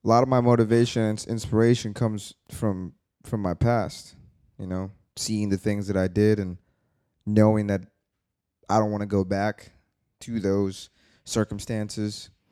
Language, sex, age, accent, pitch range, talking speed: English, male, 20-39, American, 95-120 Hz, 155 wpm